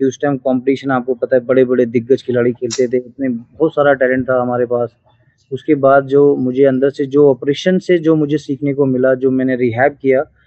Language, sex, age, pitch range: Hindi, male, 20-39, 125-140 Hz